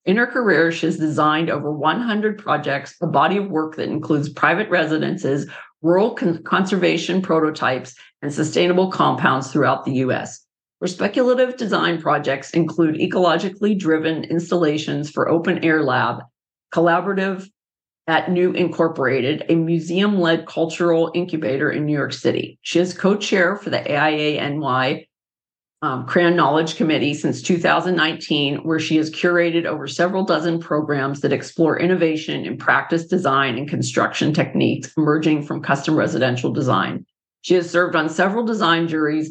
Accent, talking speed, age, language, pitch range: American, 145 wpm, 50-69, English, 150-175 Hz